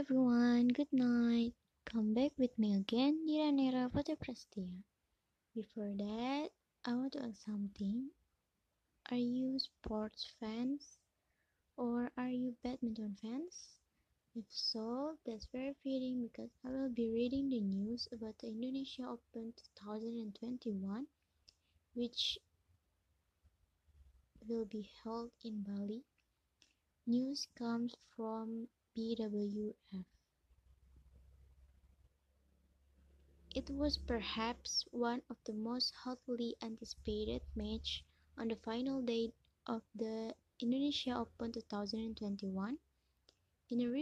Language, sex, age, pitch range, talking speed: English, female, 20-39, 210-250 Hz, 95 wpm